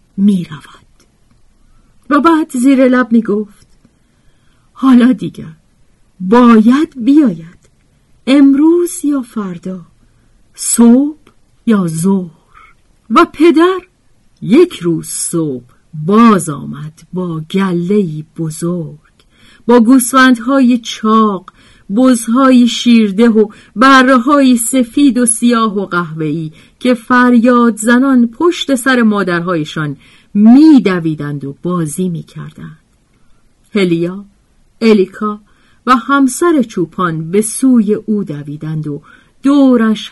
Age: 50-69